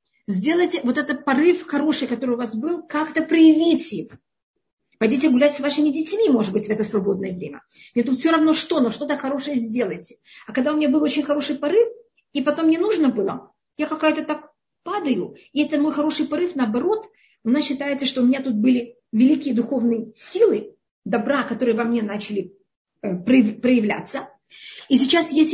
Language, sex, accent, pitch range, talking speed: Russian, female, native, 240-310 Hz, 175 wpm